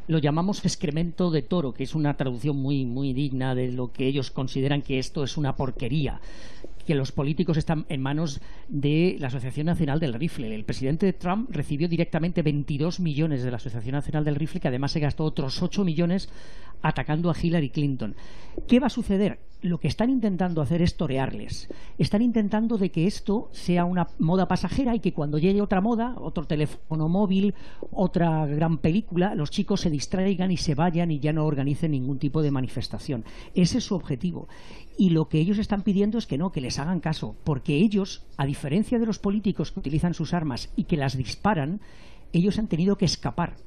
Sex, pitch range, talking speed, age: female, 145-200 Hz, 195 wpm, 40-59